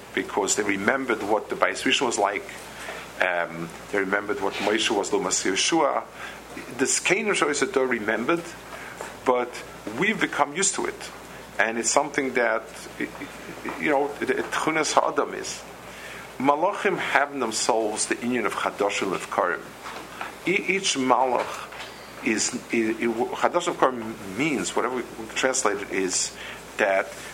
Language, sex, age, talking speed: English, male, 50-69, 130 wpm